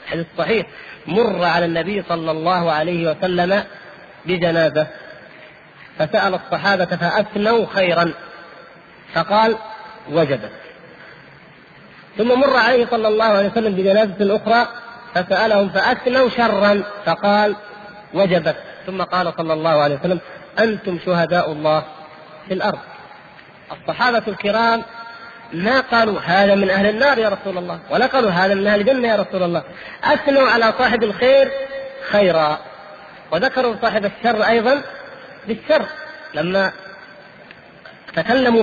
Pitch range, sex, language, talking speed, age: 180-235 Hz, male, Arabic, 110 wpm, 40-59